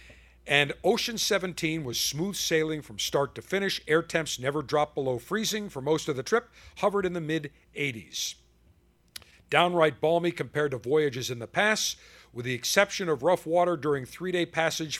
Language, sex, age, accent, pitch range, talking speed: English, male, 50-69, American, 125-180 Hz, 170 wpm